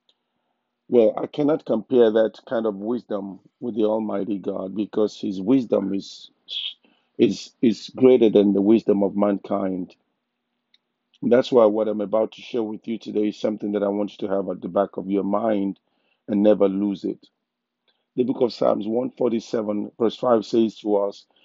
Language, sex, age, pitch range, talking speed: English, male, 50-69, 100-115 Hz, 175 wpm